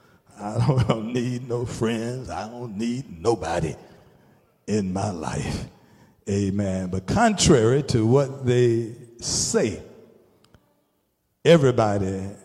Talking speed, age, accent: 95 wpm, 60-79, American